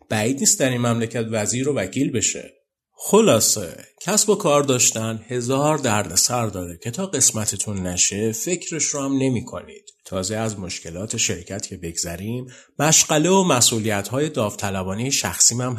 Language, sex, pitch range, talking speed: Persian, male, 100-140 Hz, 145 wpm